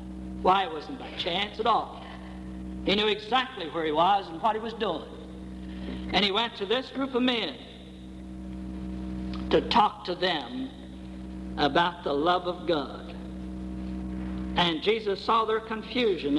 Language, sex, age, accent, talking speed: English, male, 60-79, American, 145 wpm